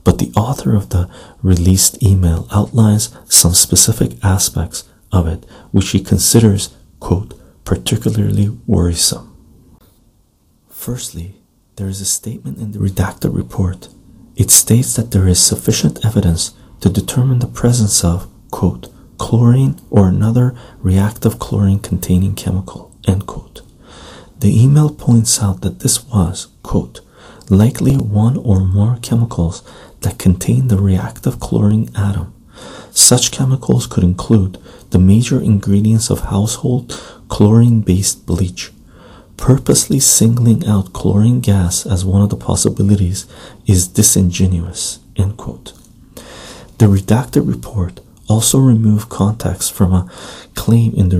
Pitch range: 95-115 Hz